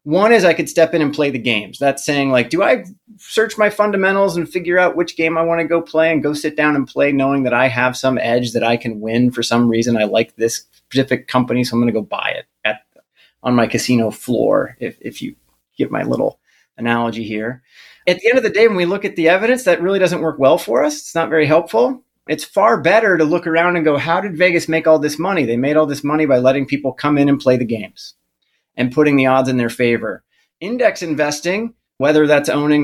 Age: 30-49